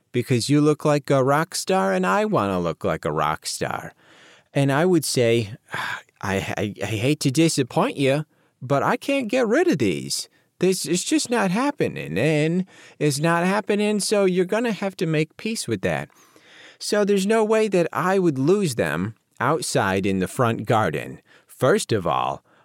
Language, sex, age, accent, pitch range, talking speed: English, male, 30-49, American, 115-160 Hz, 185 wpm